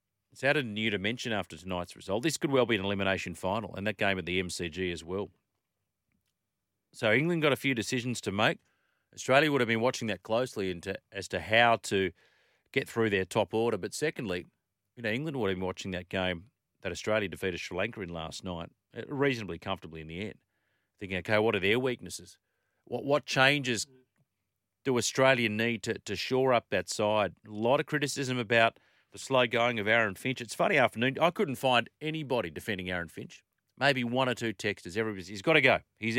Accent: Australian